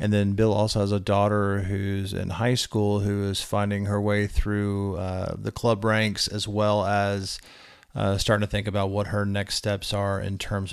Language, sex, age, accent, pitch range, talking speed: English, male, 40-59, American, 100-115 Hz, 200 wpm